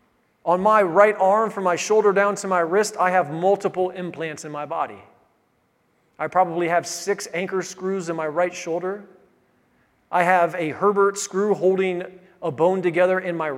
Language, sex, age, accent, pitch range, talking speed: English, male, 40-59, American, 175-205 Hz, 170 wpm